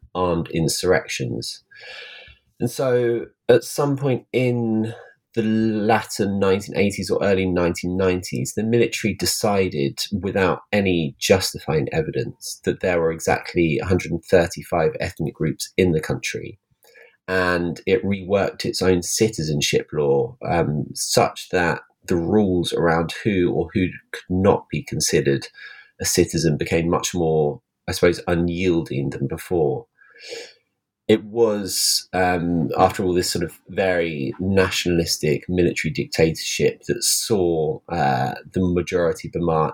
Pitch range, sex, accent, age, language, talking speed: 85-110 Hz, male, British, 30-49, English, 120 wpm